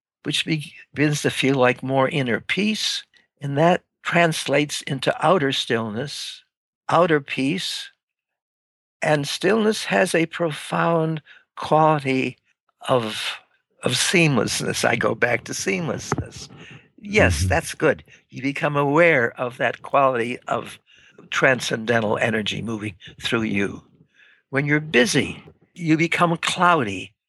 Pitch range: 110-155 Hz